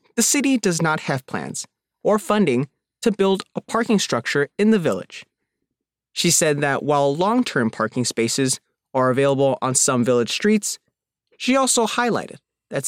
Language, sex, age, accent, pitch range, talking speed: English, male, 20-39, American, 135-205 Hz, 155 wpm